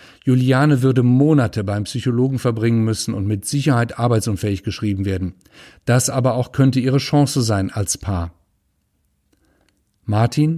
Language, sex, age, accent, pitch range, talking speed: German, male, 50-69, German, 105-130 Hz, 130 wpm